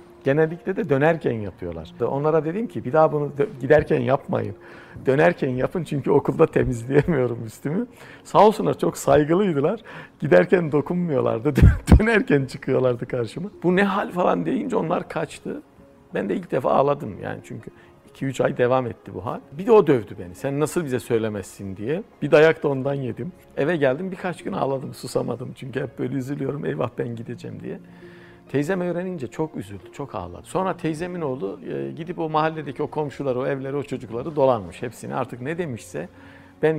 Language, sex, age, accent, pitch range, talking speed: Turkish, male, 60-79, native, 115-160 Hz, 165 wpm